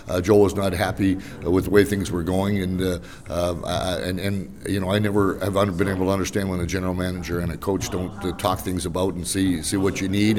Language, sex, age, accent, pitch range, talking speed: English, male, 50-69, American, 90-105 Hz, 260 wpm